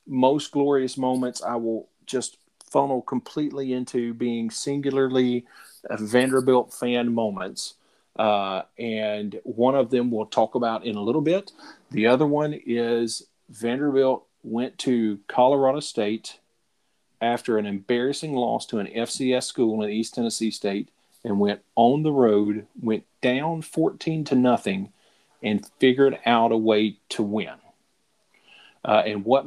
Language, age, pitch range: English, 40-59, 115-135 Hz